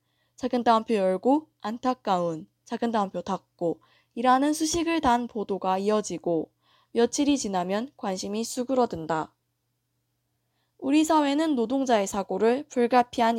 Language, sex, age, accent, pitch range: Korean, female, 20-39, native, 180-260 Hz